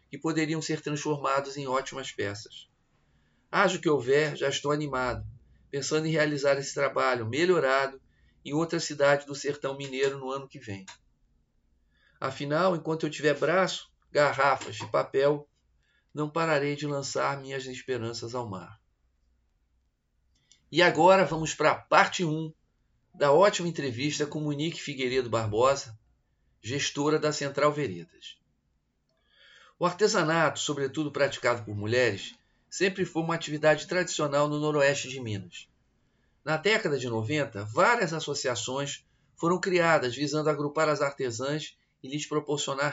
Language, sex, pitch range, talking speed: Portuguese, male, 130-155 Hz, 130 wpm